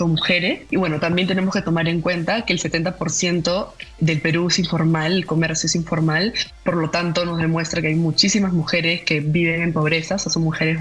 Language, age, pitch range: Spanish, 20-39, 165-190 Hz